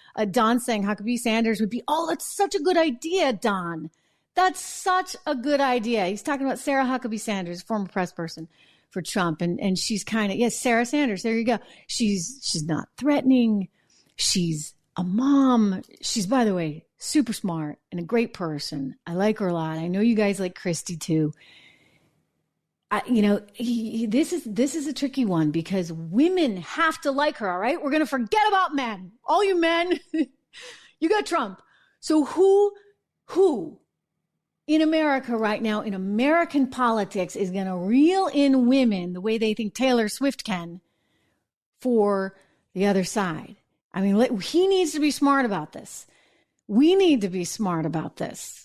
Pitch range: 190-280 Hz